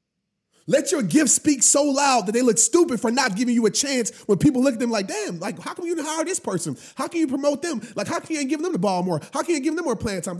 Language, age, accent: English, 30-49, American